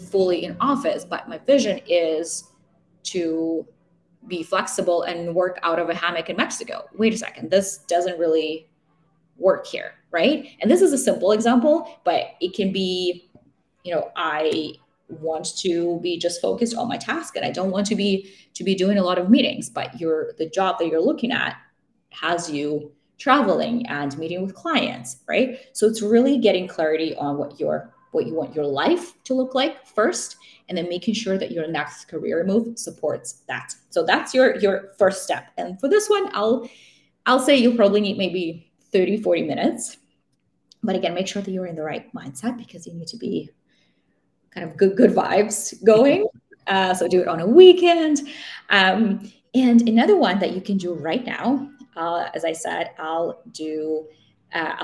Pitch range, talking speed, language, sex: 170-235 Hz, 185 wpm, English, female